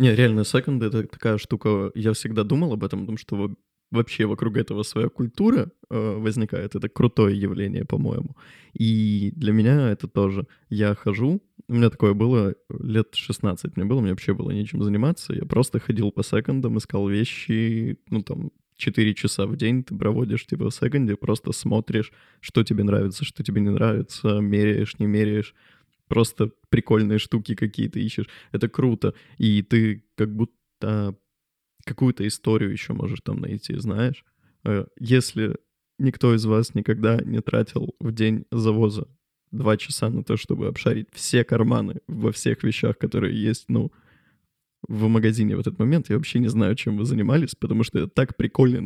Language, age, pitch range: Russian, 20-39, 105-125 Hz